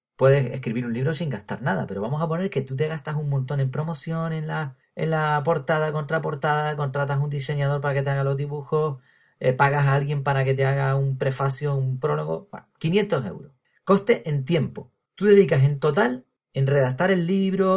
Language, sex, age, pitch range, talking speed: Spanish, male, 30-49, 135-175 Hz, 205 wpm